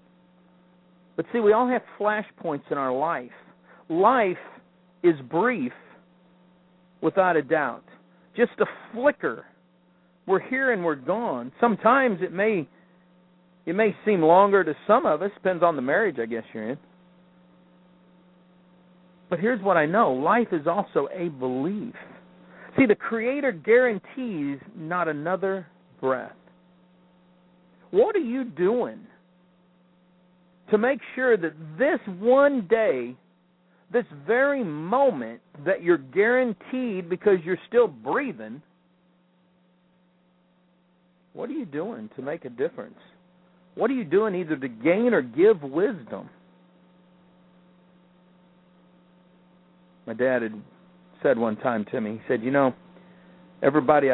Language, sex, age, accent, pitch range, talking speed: English, male, 50-69, American, 180-200 Hz, 125 wpm